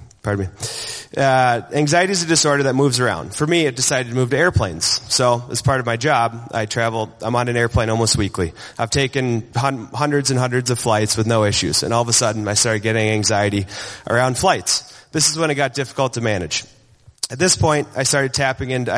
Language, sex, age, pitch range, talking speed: English, male, 30-49, 115-145 Hz, 215 wpm